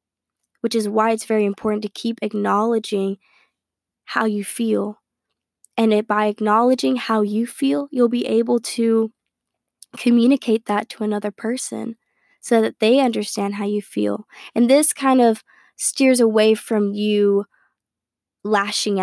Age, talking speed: 10-29, 135 wpm